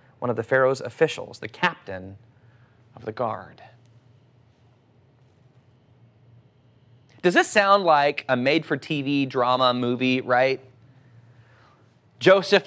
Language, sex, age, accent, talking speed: English, male, 30-49, American, 95 wpm